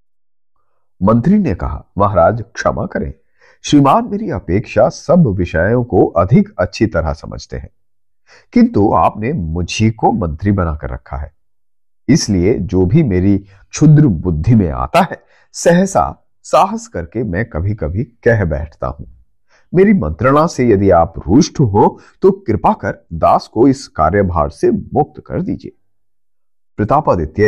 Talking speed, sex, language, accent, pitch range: 140 wpm, male, Hindi, native, 85-120 Hz